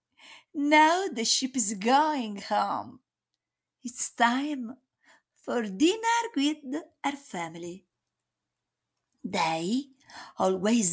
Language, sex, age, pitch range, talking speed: Italian, female, 50-69, 220-310 Hz, 80 wpm